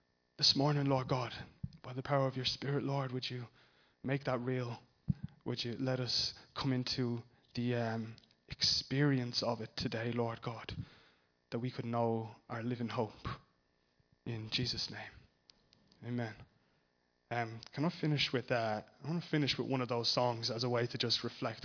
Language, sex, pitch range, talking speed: English, male, 120-140 Hz, 170 wpm